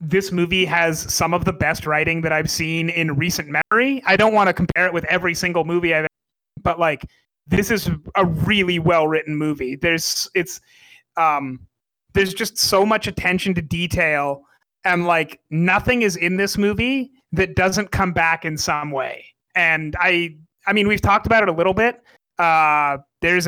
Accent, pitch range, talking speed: American, 155-185 Hz, 185 wpm